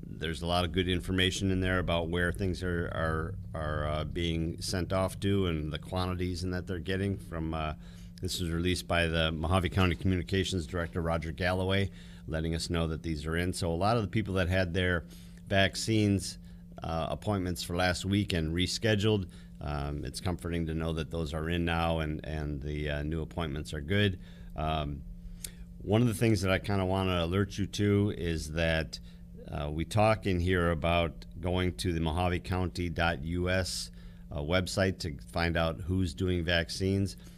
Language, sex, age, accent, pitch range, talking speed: English, male, 40-59, American, 80-95 Hz, 185 wpm